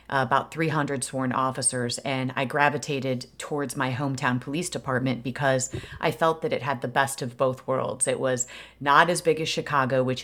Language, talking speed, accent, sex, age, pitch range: English, 180 wpm, American, female, 30-49, 135-150 Hz